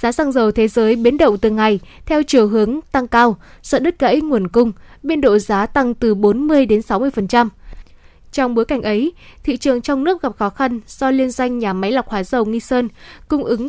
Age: 10-29